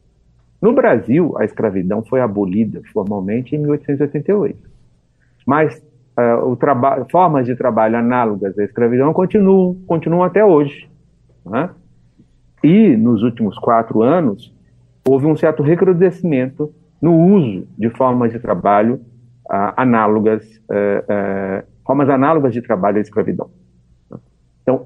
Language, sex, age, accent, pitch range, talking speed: Portuguese, male, 60-79, Brazilian, 110-150 Hz, 125 wpm